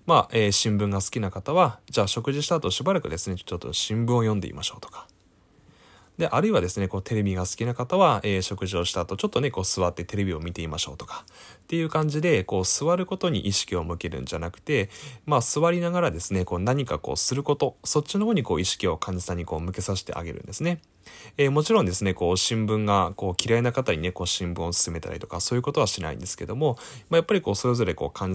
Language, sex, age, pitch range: Japanese, male, 20-39, 90-140 Hz